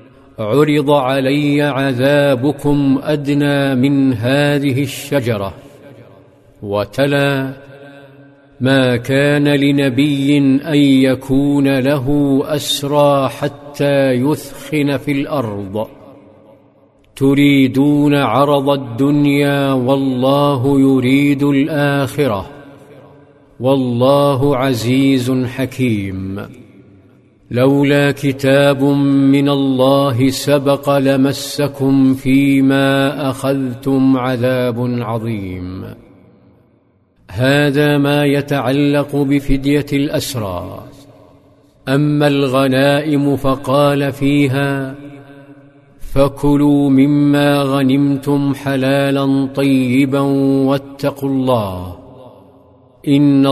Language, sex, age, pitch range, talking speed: Arabic, male, 50-69, 130-140 Hz, 60 wpm